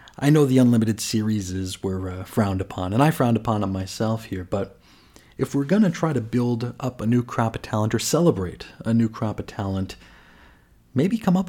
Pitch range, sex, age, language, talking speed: 100-130 Hz, male, 30-49, English, 210 wpm